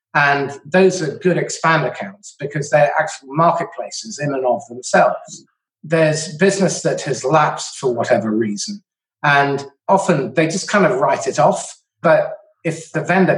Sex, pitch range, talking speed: male, 145-185 Hz, 155 wpm